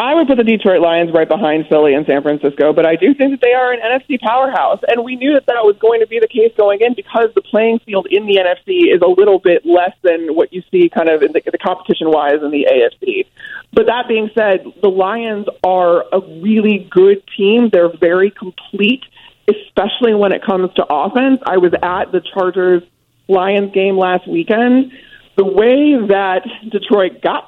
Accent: American